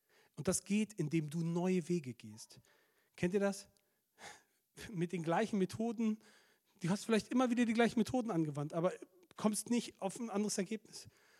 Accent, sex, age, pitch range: German, male, 40-59, 160-210 Hz